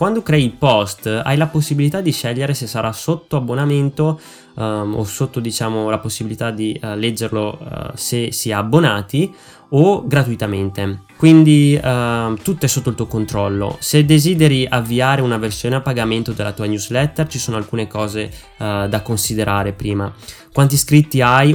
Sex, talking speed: male, 145 wpm